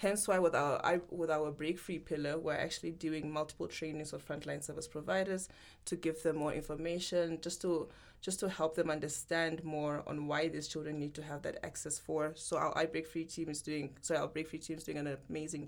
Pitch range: 150-175 Hz